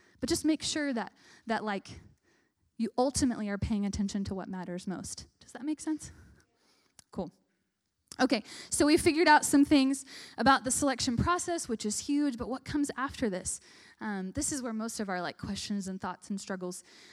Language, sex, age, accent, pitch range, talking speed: English, female, 10-29, American, 195-250 Hz, 185 wpm